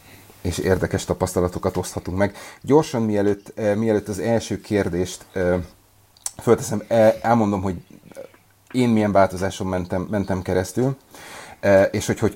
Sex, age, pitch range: male, 30-49, 90-105 Hz